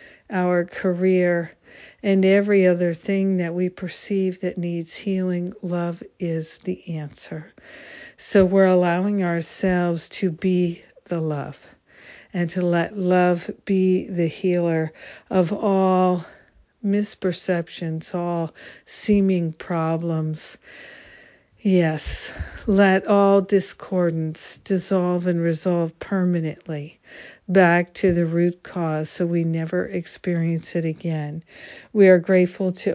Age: 60-79